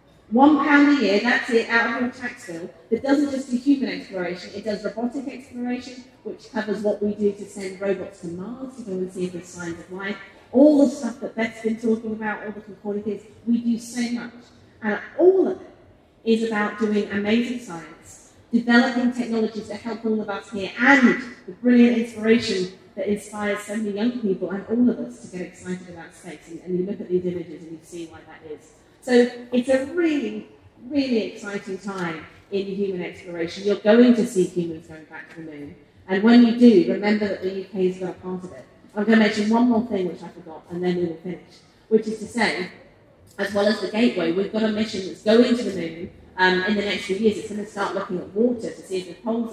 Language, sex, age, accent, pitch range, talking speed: English, female, 30-49, British, 185-230 Hz, 230 wpm